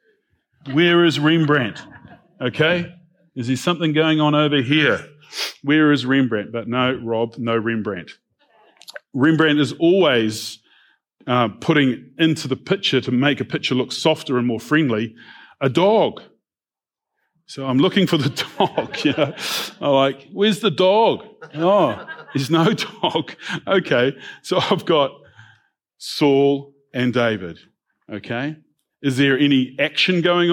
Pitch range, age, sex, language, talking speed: 120-155 Hz, 40-59, male, English, 135 wpm